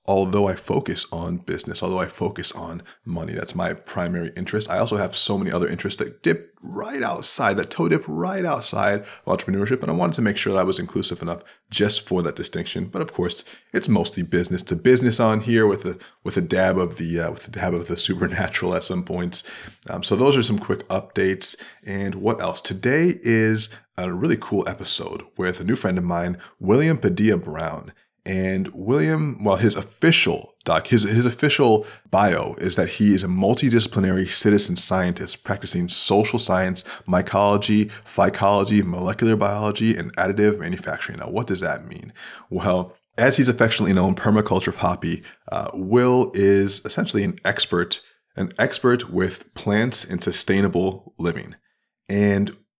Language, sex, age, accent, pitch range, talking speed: English, male, 30-49, American, 95-110 Hz, 170 wpm